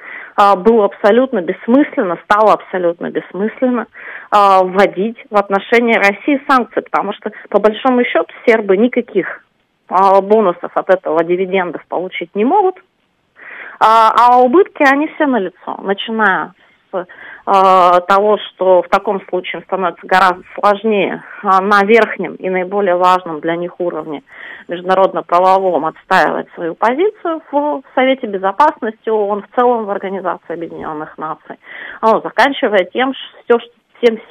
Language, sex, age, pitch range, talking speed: Russian, female, 30-49, 185-235 Hz, 125 wpm